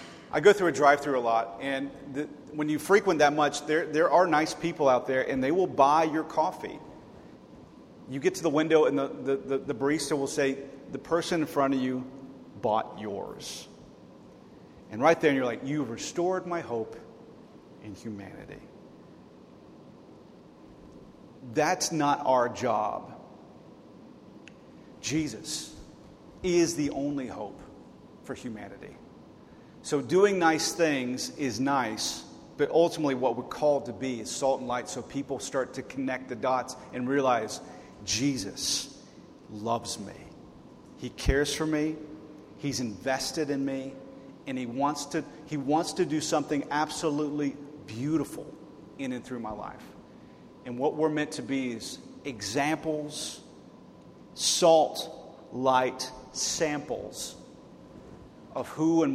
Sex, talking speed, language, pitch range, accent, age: male, 140 wpm, English, 130-155 Hz, American, 40-59